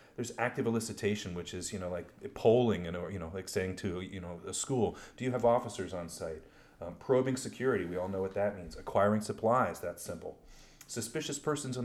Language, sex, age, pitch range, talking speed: English, male, 30-49, 90-105 Hz, 215 wpm